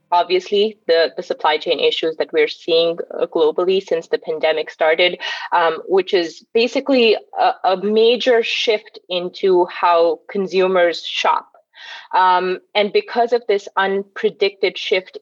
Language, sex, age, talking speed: English, female, 20-39, 130 wpm